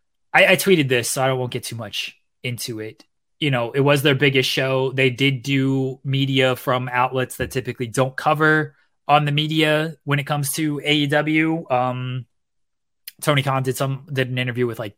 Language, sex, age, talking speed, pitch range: English, male, 20-39, 190 wpm, 120-145 Hz